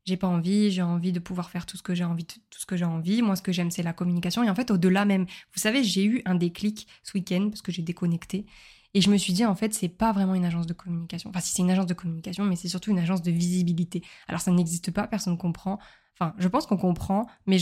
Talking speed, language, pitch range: 280 wpm, French, 180-205 Hz